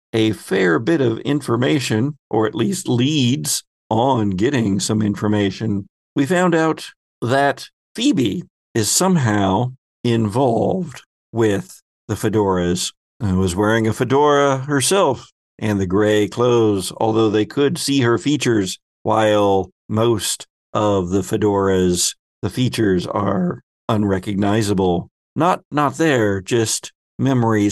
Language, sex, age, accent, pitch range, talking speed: English, male, 50-69, American, 105-140 Hz, 115 wpm